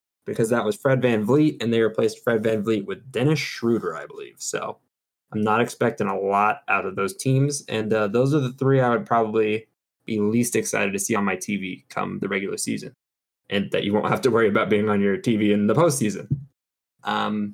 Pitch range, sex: 105-130 Hz, male